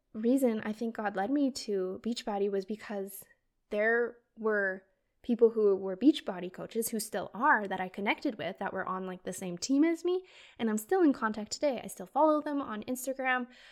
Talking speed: 195 wpm